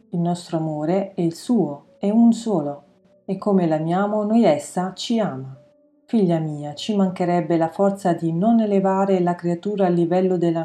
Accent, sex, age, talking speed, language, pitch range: native, female, 40-59, 170 wpm, Italian, 160-200 Hz